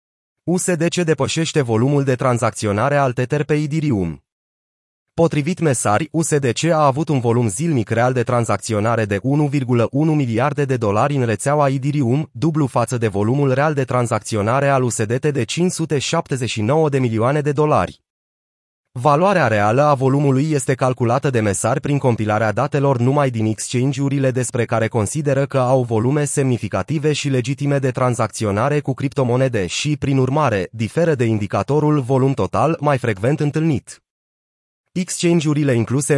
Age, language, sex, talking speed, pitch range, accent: 30-49, Romanian, male, 140 wpm, 115-145 Hz, native